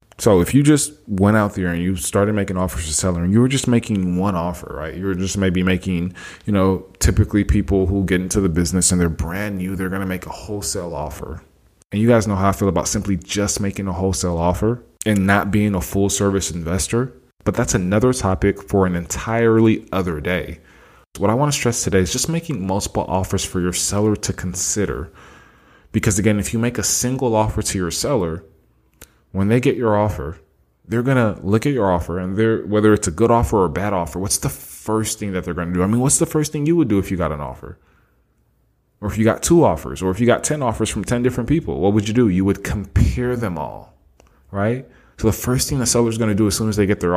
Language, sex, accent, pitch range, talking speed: English, male, American, 90-110 Hz, 245 wpm